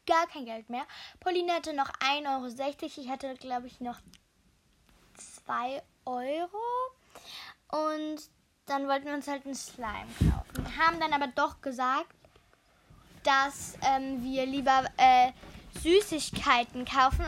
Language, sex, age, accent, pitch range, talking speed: German, female, 10-29, German, 255-325 Hz, 130 wpm